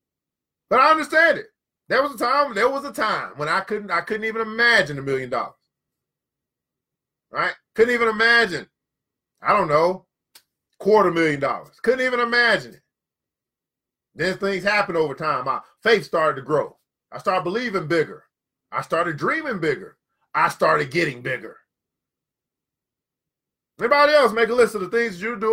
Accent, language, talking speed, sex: American, English, 160 wpm, male